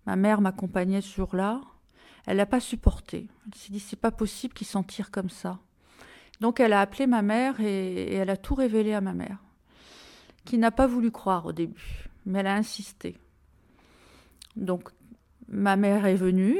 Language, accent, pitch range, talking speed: French, French, 190-235 Hz, 185 wpm